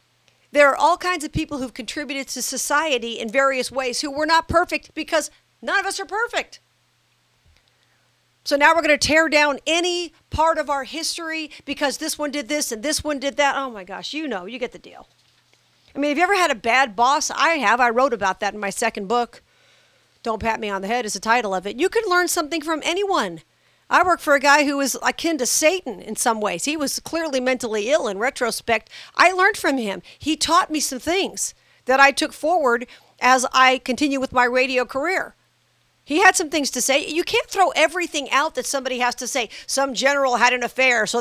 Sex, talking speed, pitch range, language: female, 220 wpm, 245-315 Hz, English